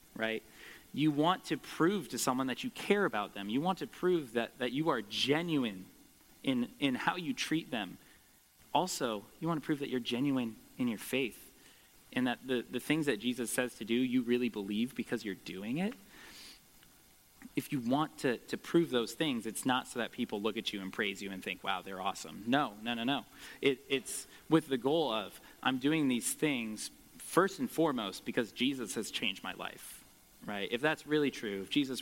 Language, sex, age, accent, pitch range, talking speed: English, male, 20-39, American, 110-155 Hz, 205 wpm